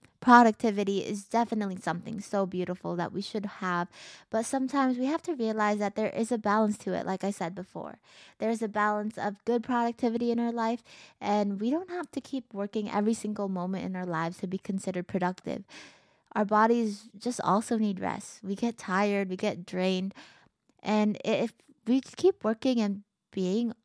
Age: 20-39